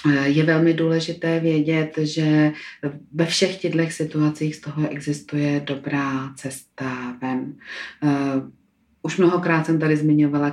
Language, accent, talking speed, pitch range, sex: Czech, native, 115 wpm, 135-145 Hz, female